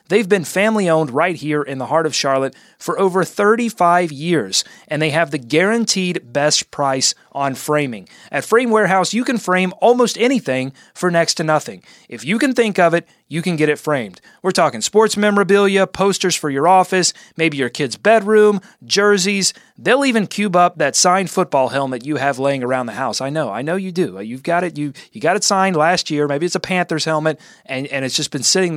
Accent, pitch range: American, 145-195 Hz